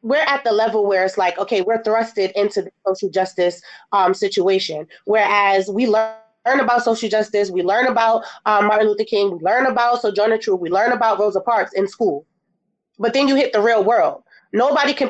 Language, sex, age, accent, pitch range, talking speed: English, female, 20-39, American, 195-230 Hz, 200 wpm